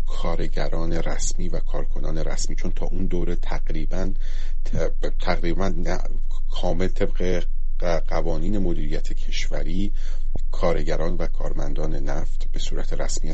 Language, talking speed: Persian, 110 wpm